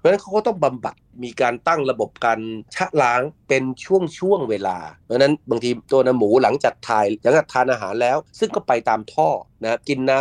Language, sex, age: Thai, male, 30-49